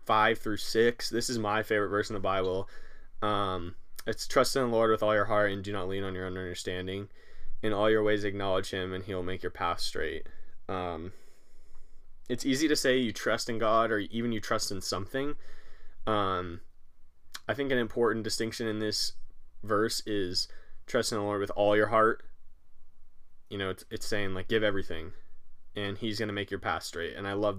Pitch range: 95-110 Hz